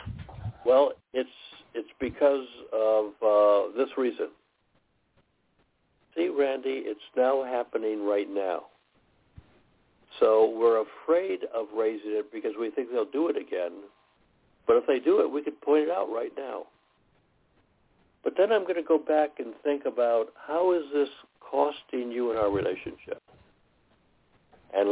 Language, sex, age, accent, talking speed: English, male, 60-79, American, 140 wpm